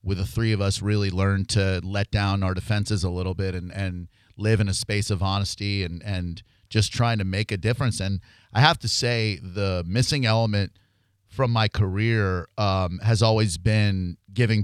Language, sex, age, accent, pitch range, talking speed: English, male, 30-49, American, 95-110 Hz, 195 wpm